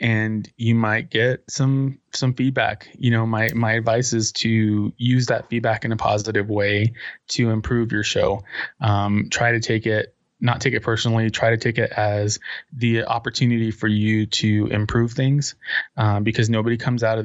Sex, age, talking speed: male, 20-39, 185 wpm